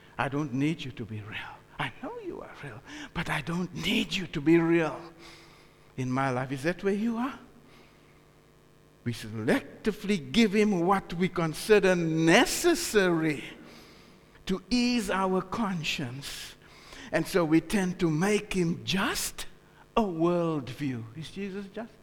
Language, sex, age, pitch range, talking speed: English, male, 60-79, 160-225 Hz, 145 wpm